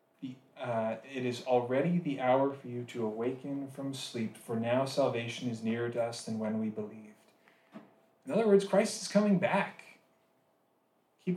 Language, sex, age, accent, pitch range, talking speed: English, male, 30-49, American, 120-160 Hz, 165 wpm